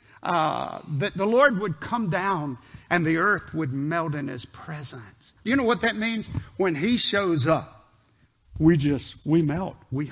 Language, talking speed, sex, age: English, 170 wpm, male, 50-69